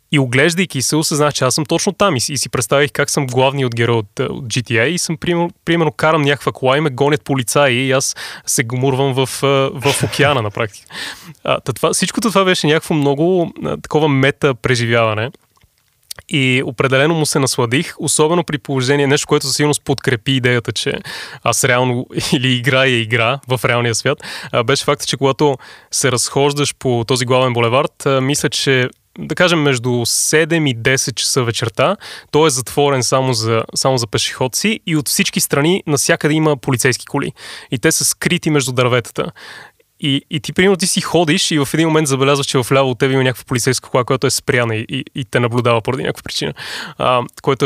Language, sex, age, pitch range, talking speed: Bulgarian, male, 20-39, 125-150 Hz, 185 wpm